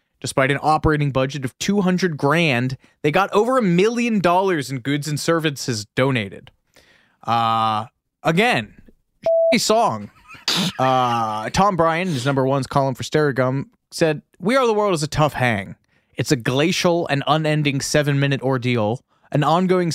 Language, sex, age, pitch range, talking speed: English, male, 30-49, 125-160 Hz, 145 wpm